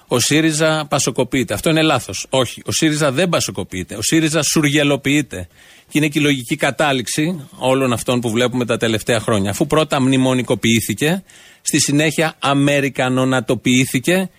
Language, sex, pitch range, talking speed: Greek, male, 125-165 Hz, 140 wpm